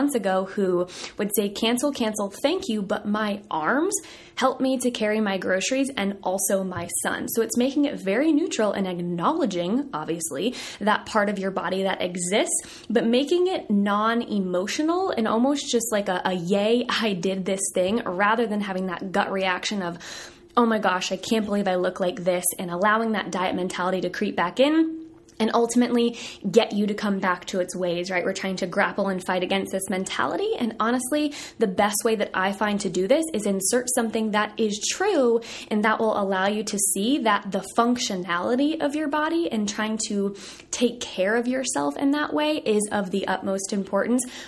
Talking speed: 195 wpm